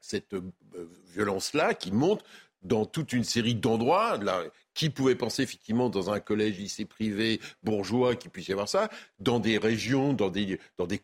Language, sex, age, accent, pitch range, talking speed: French, male, 60-79, French, 110-145 Hz, 175 wpm